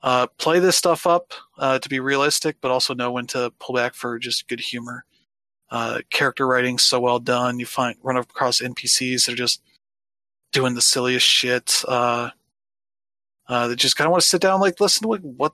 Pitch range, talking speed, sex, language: 125-145 Hz, 195 wpm, male, English